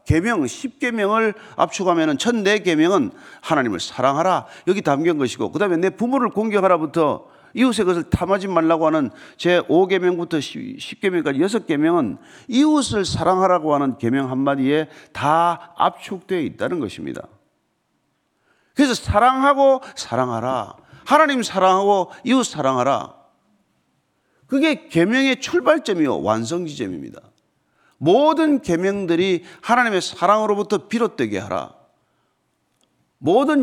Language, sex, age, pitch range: Korean, male, 40-59, 165-255 Hz